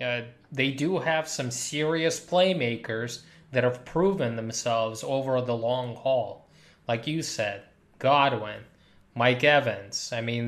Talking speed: 130 wpm